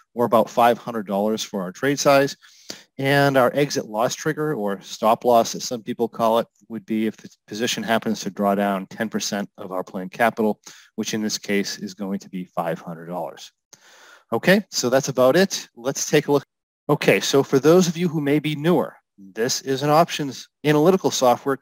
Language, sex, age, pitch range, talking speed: English, male, 30-49, 110-135 Hz, 205 wpm